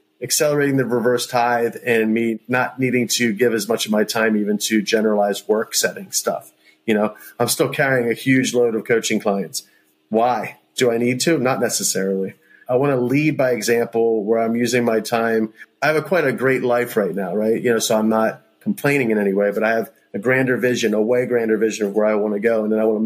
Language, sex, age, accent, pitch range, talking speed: English, male, 30-49, American, 110-135 Hz, 235 wpm